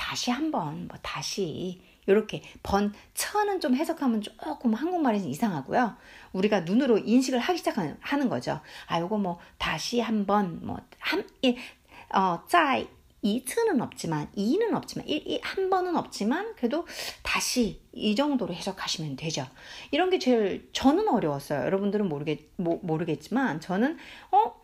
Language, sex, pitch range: Korean, female, 190-285 Hz